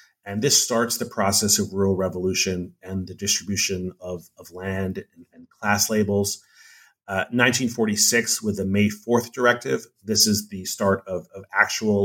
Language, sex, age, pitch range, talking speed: English, male, 30-49, 100-115 Hz, 160 wpm